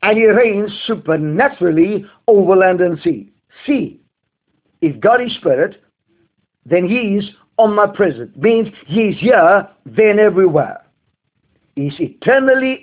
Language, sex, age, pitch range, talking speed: English, male, 50-69, 180-245 Hz, 120 wpm